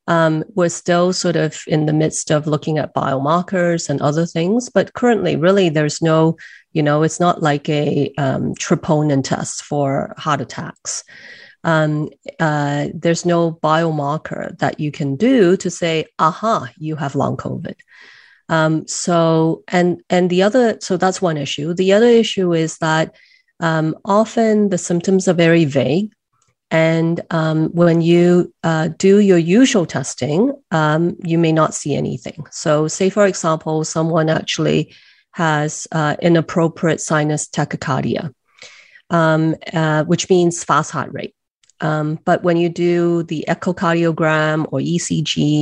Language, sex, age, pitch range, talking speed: English, female, 30-49, 155-185 Hz, 145 wpm